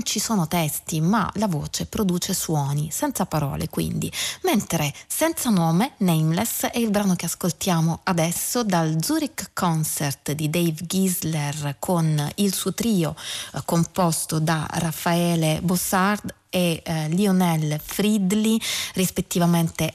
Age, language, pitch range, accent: 30-49, Italian, 160-190 Hz, native